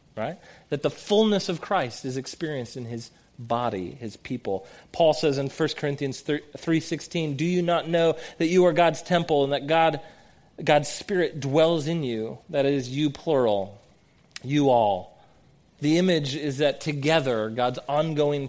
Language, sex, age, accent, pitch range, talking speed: English, male, 30-49, American, 125-165 Hz, 160 wpm